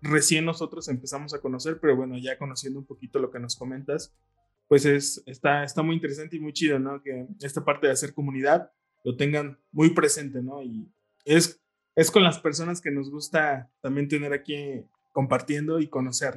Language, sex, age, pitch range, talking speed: Spanish, male, 20-39, 140-180 Hz, 185 wpm